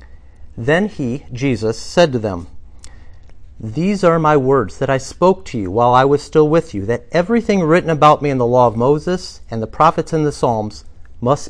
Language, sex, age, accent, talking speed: English, male, 50-69, American, 200 wpm